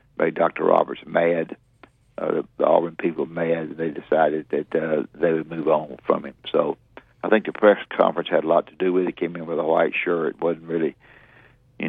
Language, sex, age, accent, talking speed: English, male, 60-79, American, 215 wpm